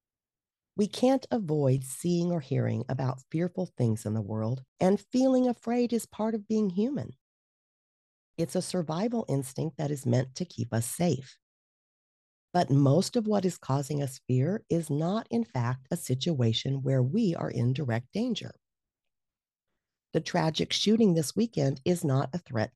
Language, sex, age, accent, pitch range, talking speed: English, female, 50-69, American, 125-180 Hz, 160 wpm